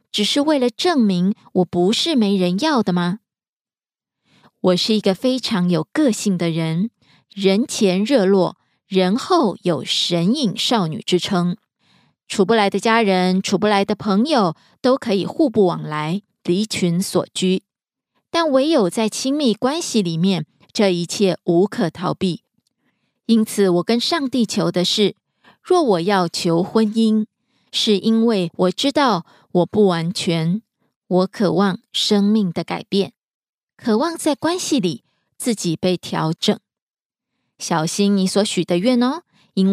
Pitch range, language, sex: 180-230 Hz, Korean, female